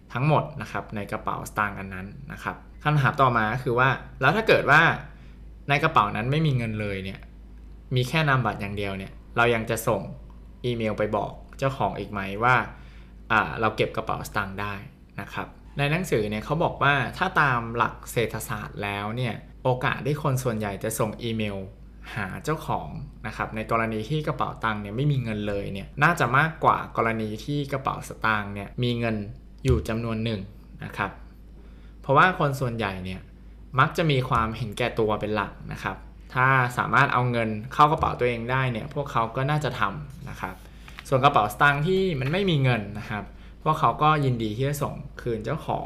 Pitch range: 105-140 Hz